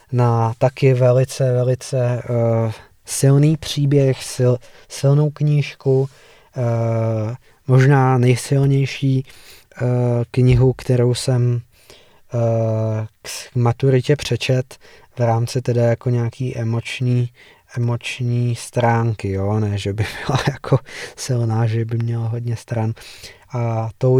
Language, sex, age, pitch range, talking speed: Czech, male, 20-39, 115-130 Hz, 105 wpm